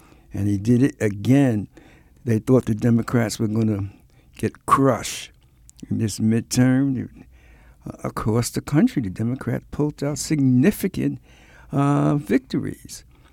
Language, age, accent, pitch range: English, 60-79, American, 105-150 Hz